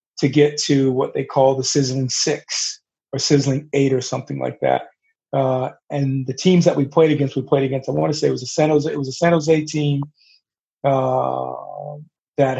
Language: English